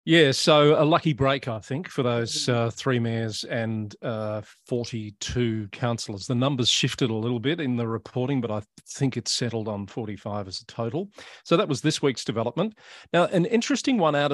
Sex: male